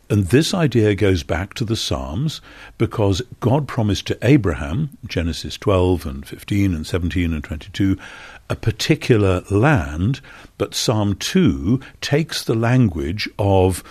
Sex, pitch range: male, 90-115 Hz